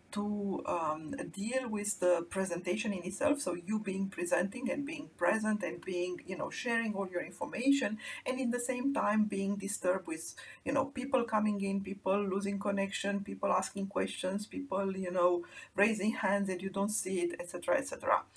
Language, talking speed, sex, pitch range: English, 175 wpm, female, 185-260 Hz